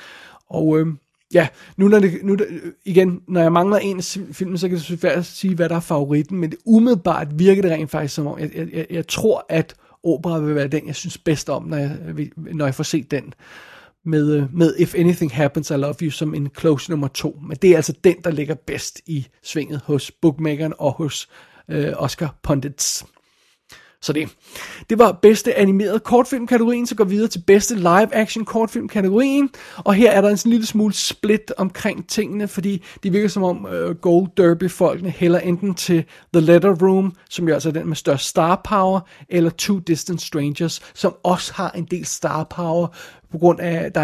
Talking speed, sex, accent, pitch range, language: 195 wpm, male, native, 155-190 Hz, Danish